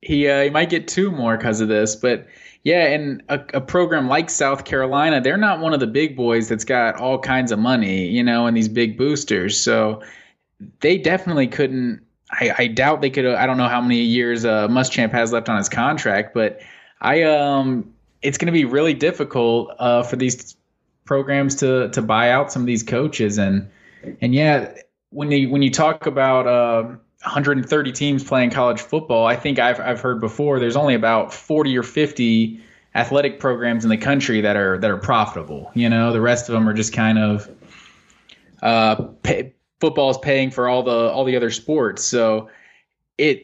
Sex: male